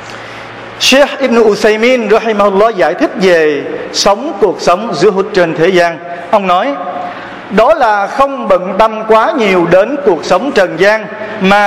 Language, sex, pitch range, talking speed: Vietnamese, male, 185-245 Hz, 160 wpm